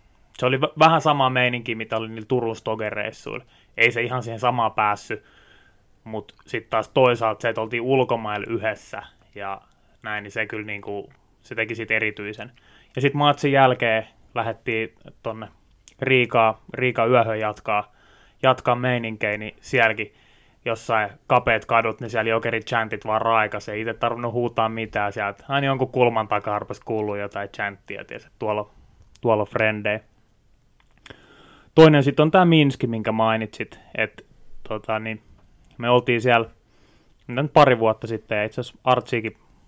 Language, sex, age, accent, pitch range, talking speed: Finnish, male, 20-39, native, 105-120 Hz, 145 wpm